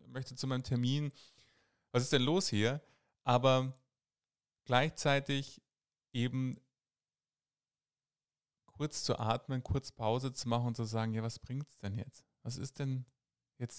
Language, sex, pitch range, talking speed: German, male, 110-130 Hz, 140 wpm